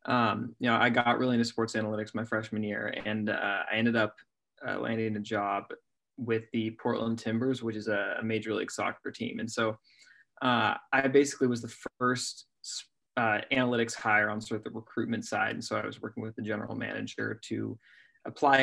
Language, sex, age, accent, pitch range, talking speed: English, male, 20-39, American, 110-120 Hz, 195 wpm